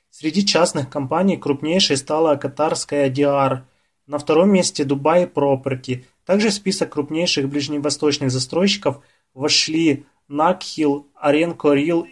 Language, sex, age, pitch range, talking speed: Russian, male, 20-39, 135-160 Hz, 110 wpm